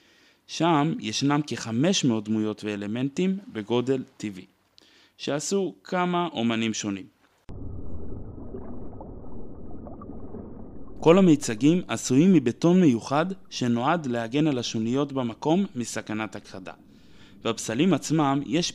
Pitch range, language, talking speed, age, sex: 110-155 Hz, Hebrew, 85 wpm, 20-39, male